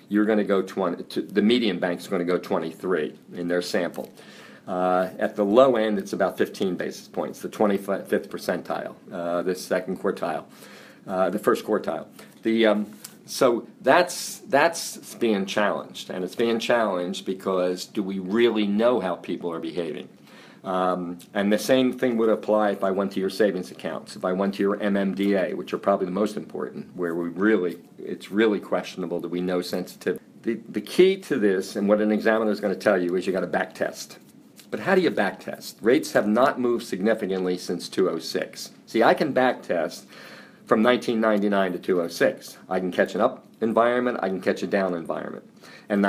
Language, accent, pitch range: English, American, 95-110 Hz